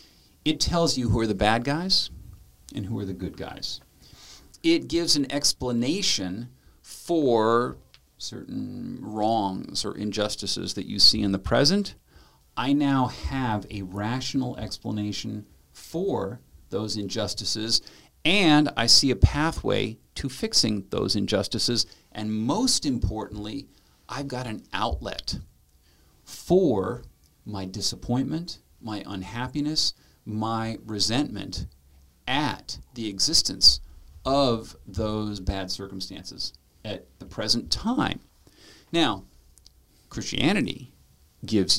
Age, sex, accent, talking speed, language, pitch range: 50-69, male, American, 110 wpm, English, 95-120 Hz